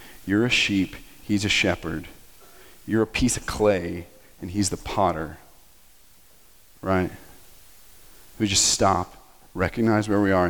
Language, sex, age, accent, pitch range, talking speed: English, male, 40-59, American, 95-110 Hz, 130 wpm